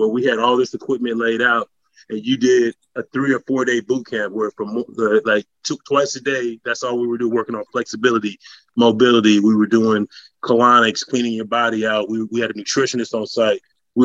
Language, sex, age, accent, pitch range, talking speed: English, male, 30-49, American, 115-130 Hz, 220 wpm